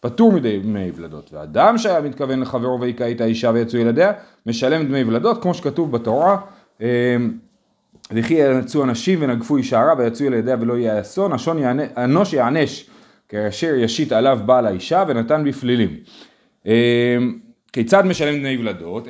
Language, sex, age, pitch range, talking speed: Hebrew, male, 30-49, 120-175 Hz, 140 wpm